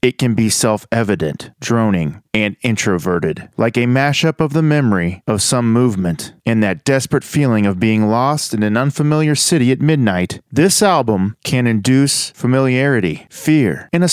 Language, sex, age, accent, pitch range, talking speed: English, male, 40-59, American, 110-155 Hz, 155 wpm